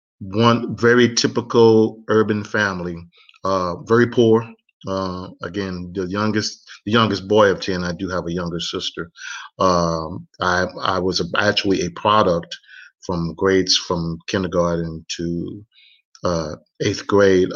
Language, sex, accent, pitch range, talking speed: English, male, American, 90-105 Hz, 135 wpm